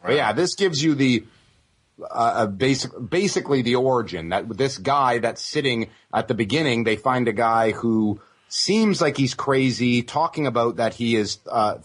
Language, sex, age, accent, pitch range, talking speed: English, male, 30-49, American, 110-140 Hz, 175 wpm